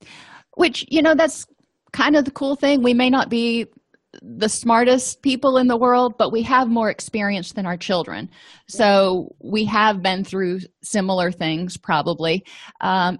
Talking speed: 165 wpm